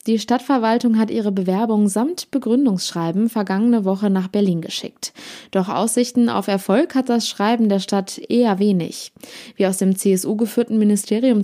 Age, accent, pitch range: 20-39, German, 185-235 Hz